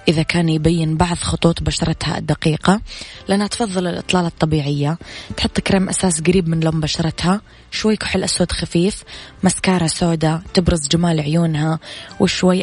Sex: female